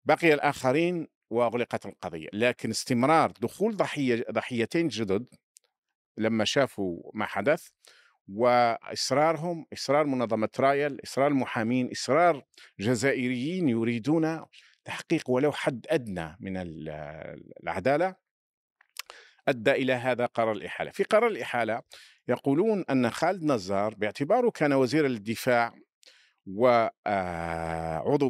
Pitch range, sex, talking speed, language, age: 110-145 Hz, male, 100 wpm, Arabic, 50-69